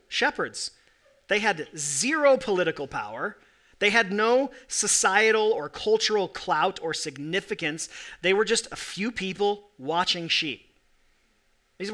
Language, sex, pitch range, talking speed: English, male, 165-220 Hz, 120 wpm